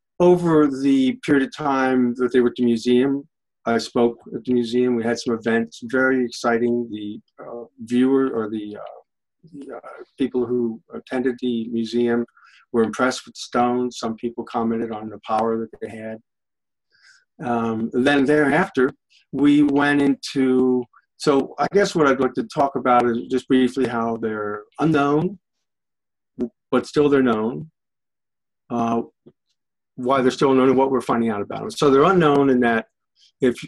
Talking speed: 165 wpm